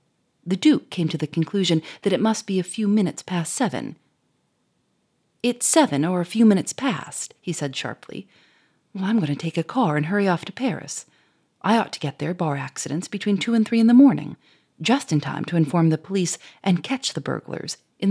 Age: 40-59